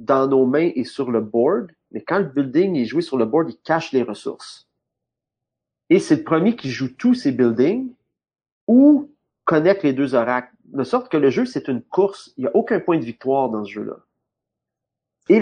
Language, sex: French, male